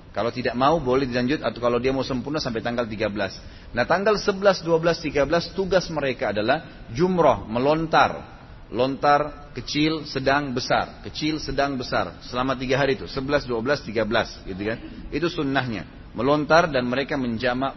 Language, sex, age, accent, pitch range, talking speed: Indonesian, male, 30-49, native, 95-130 Hz, 150 wpm